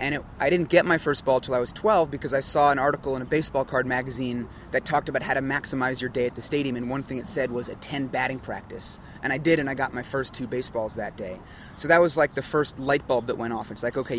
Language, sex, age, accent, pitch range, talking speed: English, male, 30-49, American, 130-155 Hz, 290 wpm